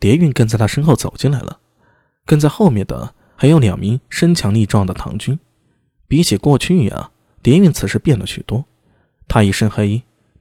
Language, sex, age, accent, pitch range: Chinese, male, 20-39, native, 105-160 Hz